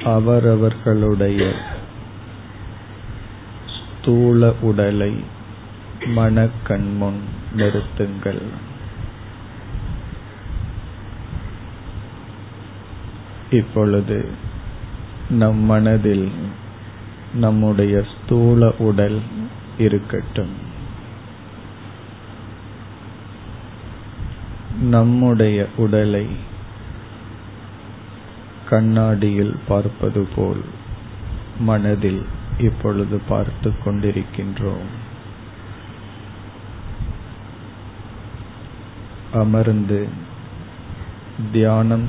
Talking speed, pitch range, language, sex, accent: 35 wpm, 100-110 Hz, Tamil, male, native